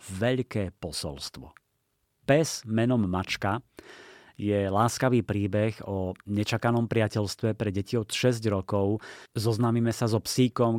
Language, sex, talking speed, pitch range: Slovak, male, 110 wpm, 100-125 Hz